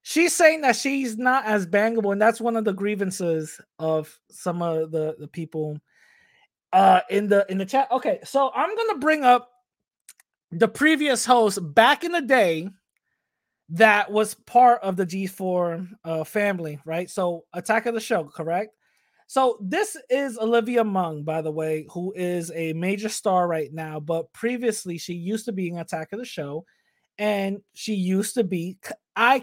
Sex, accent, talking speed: male, American, 175 wpm